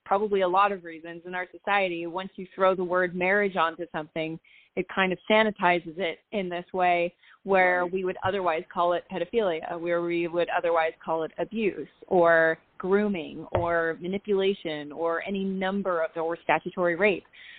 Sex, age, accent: female, 30-49, American